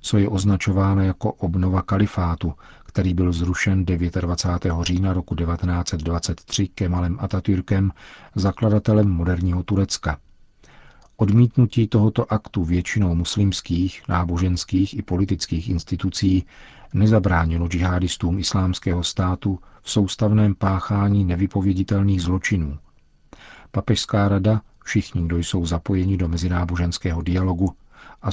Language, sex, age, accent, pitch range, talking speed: Czech, male, 40-59, native, 90-100 Hz, 95 wpm